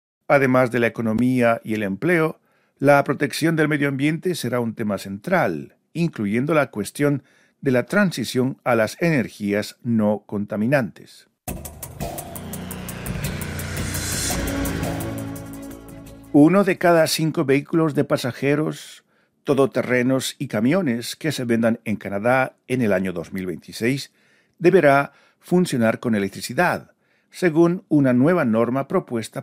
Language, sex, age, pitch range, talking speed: Spanish, male, 50-69, 110-155 Hz, 110 wpm